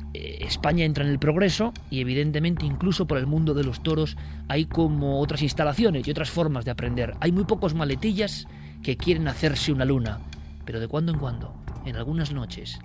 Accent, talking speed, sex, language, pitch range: Spanish, 185 wpm, male, Spanish, 110-155 Hz